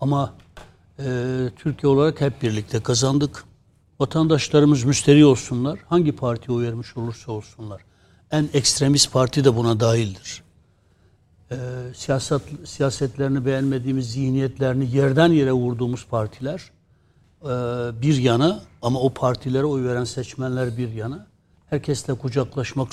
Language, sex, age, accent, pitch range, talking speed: Turkish, male, 60-79, native, 120-145 Hz, 115 wpm